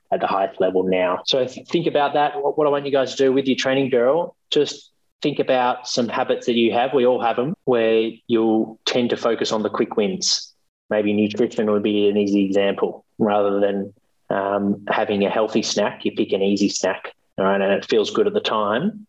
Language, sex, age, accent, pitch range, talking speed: English, male, 20-39, Australian, 100-115 Hz, 215 wpm